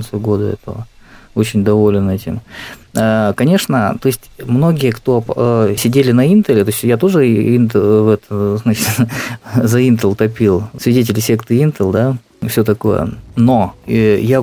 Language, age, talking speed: Russian, 20-39, 135 wpm